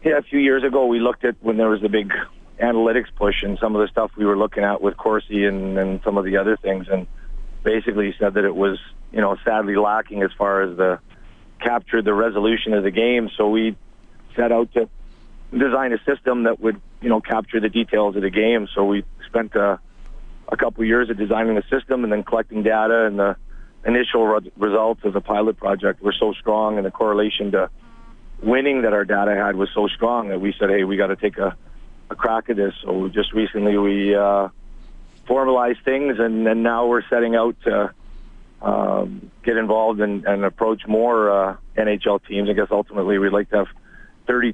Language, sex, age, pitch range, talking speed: English, male, 40-59, 100-115 Hz, 210 wpm